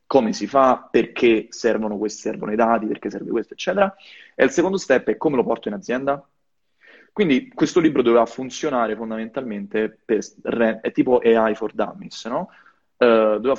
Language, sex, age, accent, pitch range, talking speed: Italian, male, 20-39, native, 110-135 Hz, 170 wpm